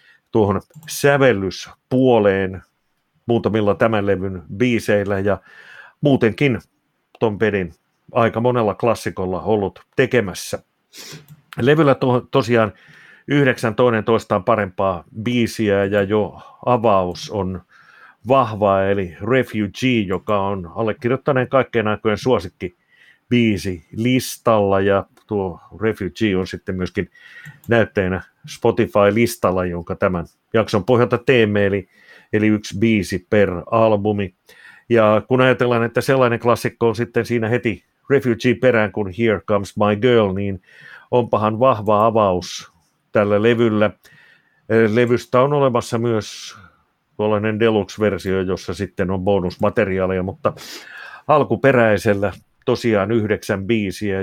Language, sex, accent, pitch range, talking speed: Finnish, male, native, 100-120 Hz, 105 wpm